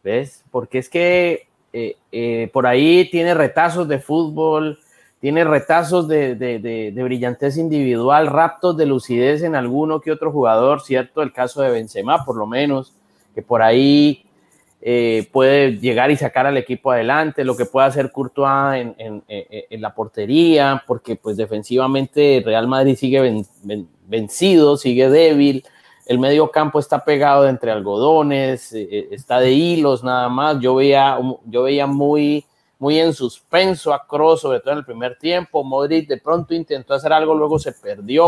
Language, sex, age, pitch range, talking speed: Spanish, male, 30-49, 130-165 Hz, 170 wpm